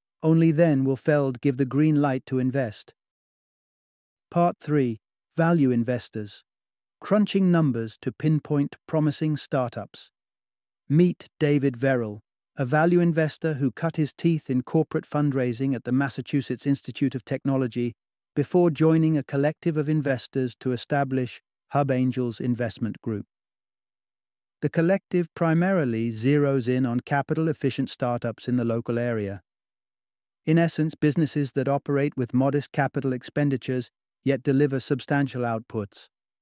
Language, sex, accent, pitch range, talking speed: English, male, British, 125-155 Hz, 125 wpm